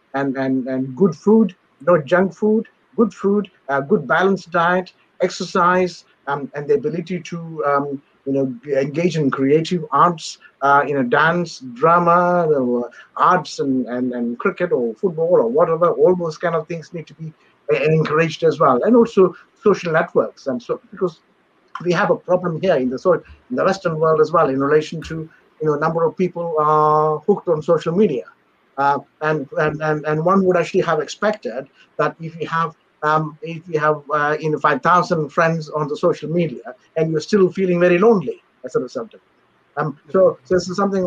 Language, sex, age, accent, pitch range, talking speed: English, male, 60-79, Indian, 155-185 Hz, 180 wpm